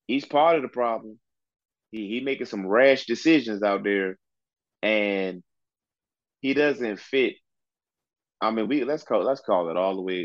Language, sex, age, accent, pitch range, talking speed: English, male, 30-49, American, 95-115 Hz, 165 wpm